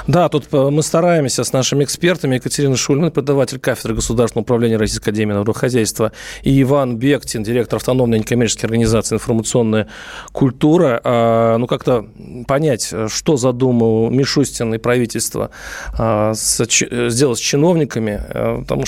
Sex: male